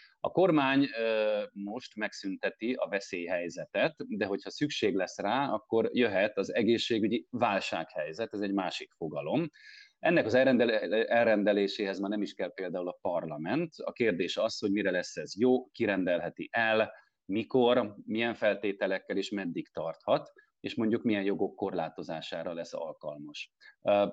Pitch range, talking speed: 95-120 Hz, 130 wpm